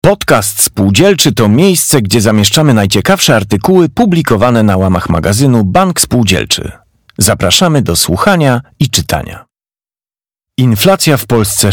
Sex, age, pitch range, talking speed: male, 40-59, 100-145 Hz, 115 wpm